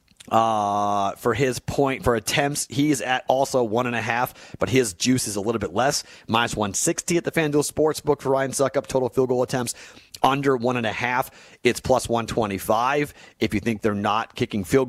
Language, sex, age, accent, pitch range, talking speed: English, male, 30-49, American, 115-140 Hz, 210 wpm